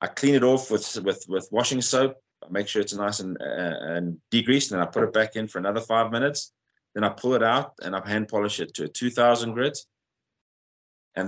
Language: English